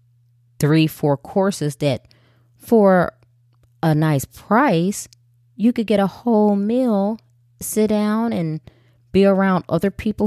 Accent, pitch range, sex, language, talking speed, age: American, 120-170 Hz, female, English, 125 wpm, 20-39